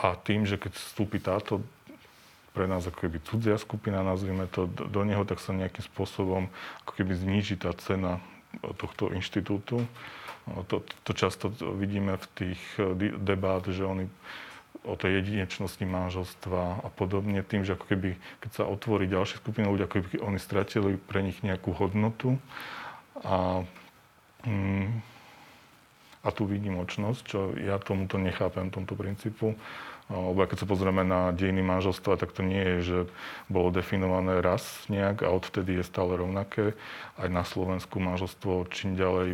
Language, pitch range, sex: Slovak, 90-100 Hz, male